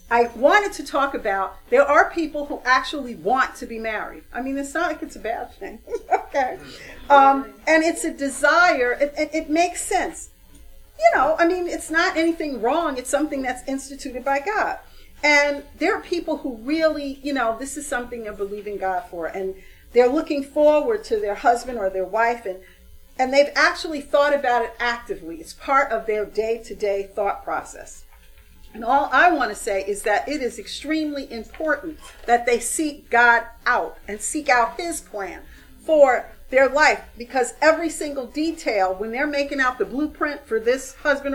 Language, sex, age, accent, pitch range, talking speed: English, female, 50-69, American, 230-315 Hz, 185 wpm